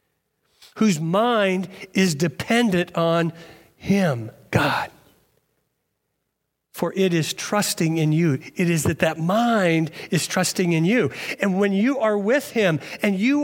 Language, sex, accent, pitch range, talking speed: English, male, American, 150-205 Hz, 135 wpm